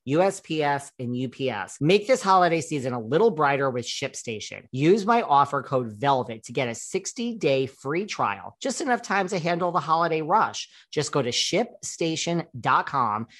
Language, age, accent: English, 40-59, American